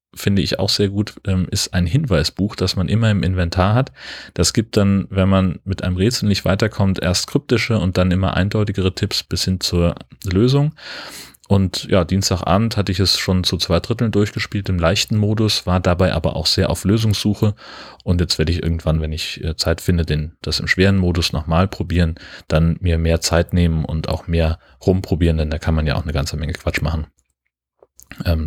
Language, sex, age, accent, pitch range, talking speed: German, male, 30-49, German, 85-100 Hz, 195 wpm